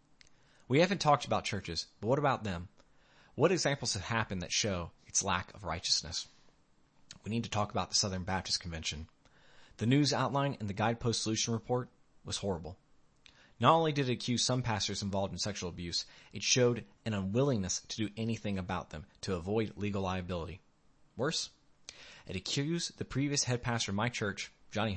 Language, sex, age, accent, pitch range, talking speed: English, male, 30-49, American, 95-125 Hz, 175 wpm